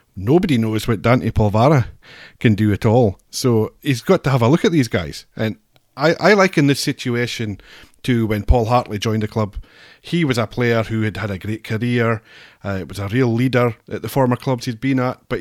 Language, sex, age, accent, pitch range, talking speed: English, male, 30-49, British, 110-130 Hz, 215 wpm